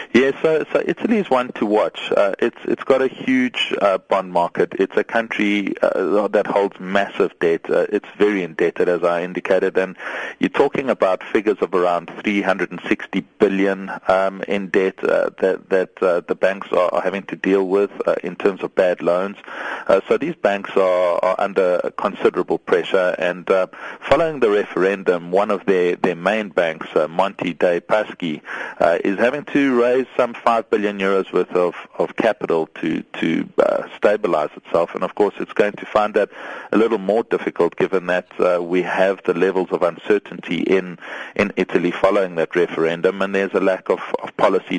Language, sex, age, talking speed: English, male, 40-59, 185 wpm